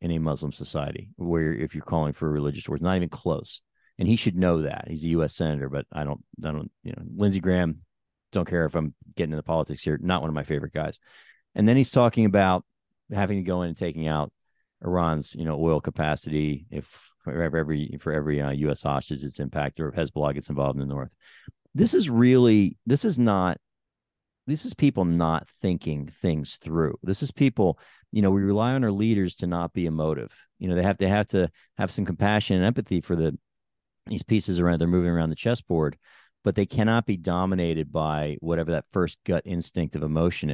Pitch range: 75-95 Hz